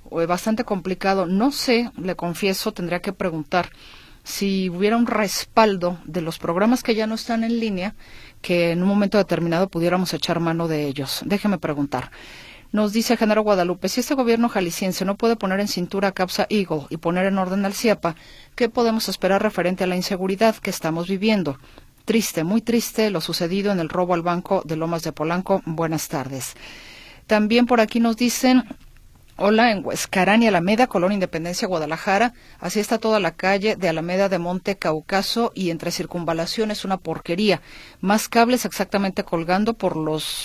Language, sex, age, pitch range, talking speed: Spanish, female, 40-59, 170-210 Hz, 170 wpm